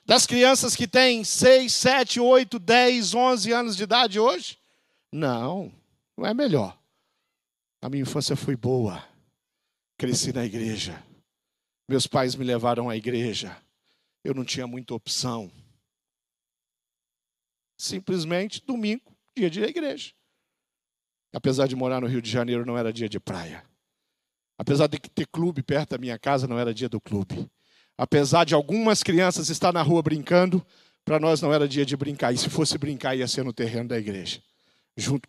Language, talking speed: Portuguese, 160 wpm